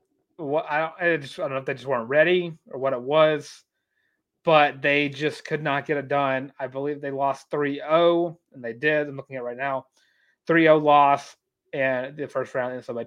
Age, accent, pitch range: 30-49, American, 135-165 Hz